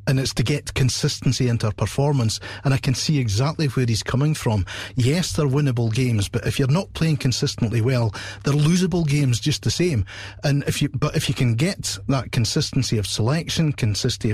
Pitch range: 105-140 Hz